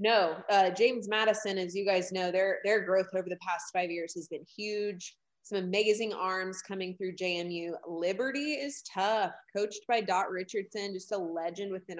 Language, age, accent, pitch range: English, 20-39, American, 185-240 Hz